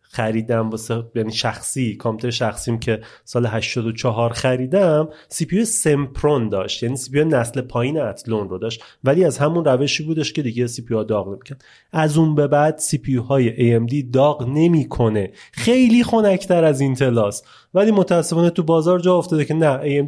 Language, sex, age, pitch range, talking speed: Persian, male, 30-49, 120-170 Hz, 180 wpm